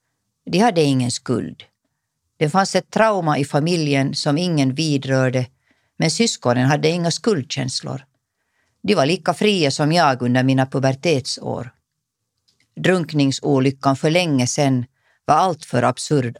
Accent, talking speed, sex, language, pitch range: native, 125 wpm, female, Swedish, 130-165 Hz